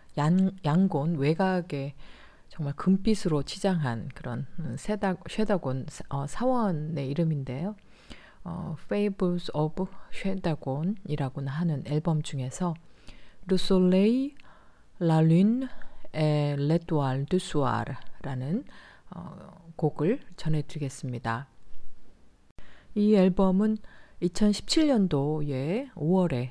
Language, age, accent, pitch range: Korean, 40-59, native, 145-190 Hz